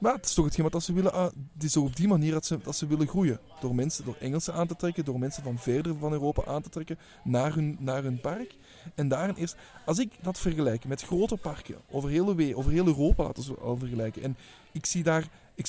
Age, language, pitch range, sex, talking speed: 20-39, Dutch, 140-185 Hz, male, 215 wpm